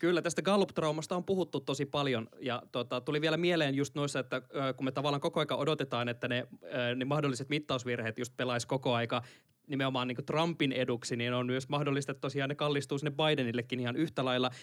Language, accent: Finnish, native